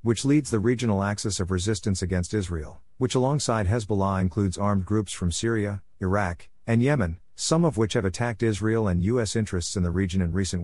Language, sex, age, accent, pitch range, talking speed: English, male, 50-69, American, 90-115 Hz, 190 wpm